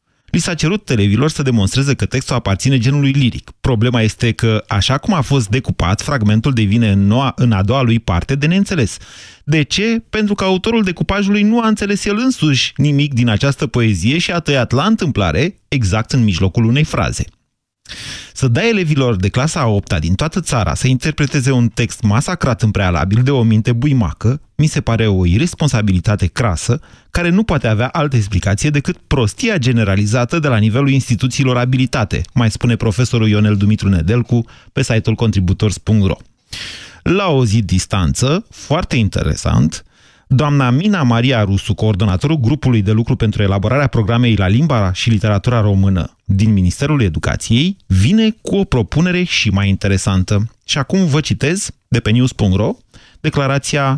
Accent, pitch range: native, 105-145 Hz